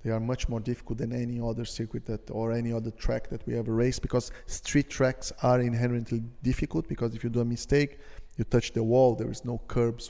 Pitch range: 120-135 Hz